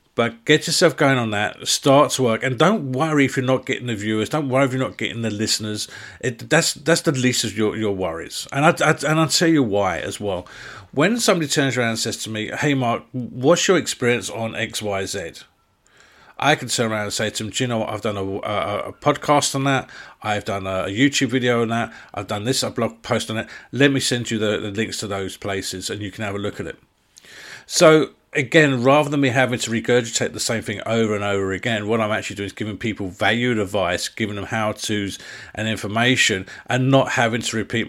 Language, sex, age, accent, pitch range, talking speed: English, male, 40-59, British, 105-130 Hz, 240 wpm